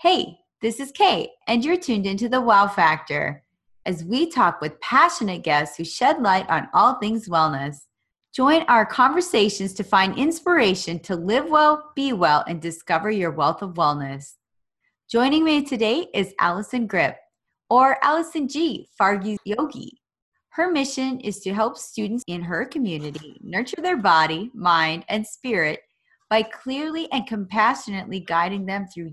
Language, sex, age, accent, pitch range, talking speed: English, female, 30-49, American, 175-255 Hz, 150 wpm